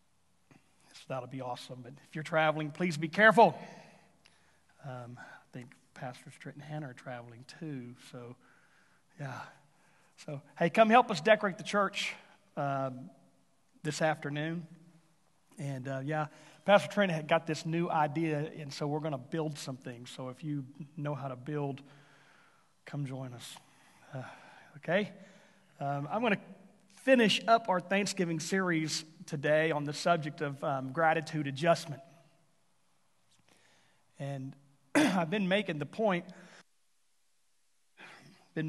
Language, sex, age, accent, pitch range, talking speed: English, male, 40-59, American, 140-175 Hz, 135 wpm